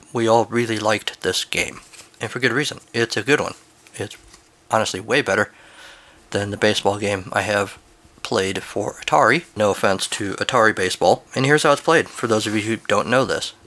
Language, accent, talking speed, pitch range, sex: English, American, 200 wpm, 110-125 Hz, male